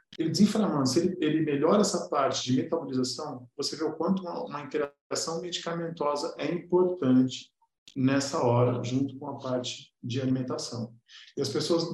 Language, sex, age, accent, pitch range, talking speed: Portuguese, male, 50-69, Brazilian, 125-165 Hz, 150 wpm